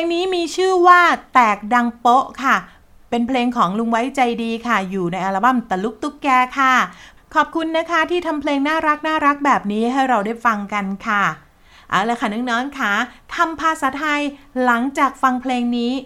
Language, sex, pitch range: Thai, female, 215-285 Hz